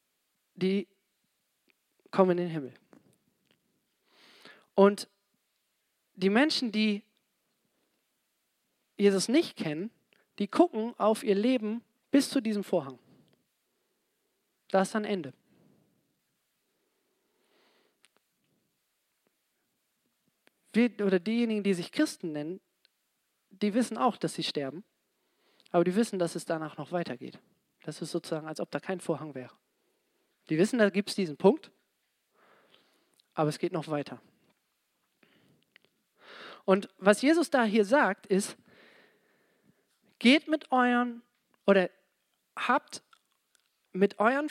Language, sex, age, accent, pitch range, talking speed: German, male, 40-59, German, 175-240 Hz, 110 wpm